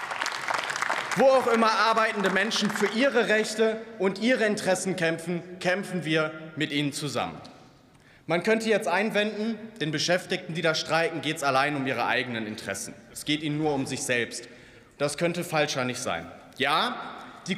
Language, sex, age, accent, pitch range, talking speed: German, male, 30-49, German, 155-205 Hz, 155 wpm